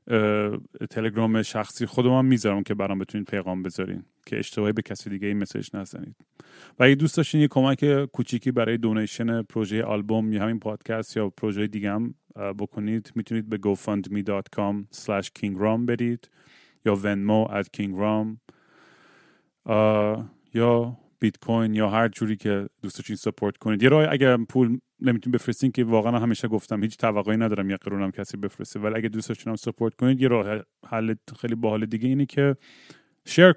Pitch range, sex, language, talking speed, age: 105-120 Hz, male, Persian, 155 wpm, 30-49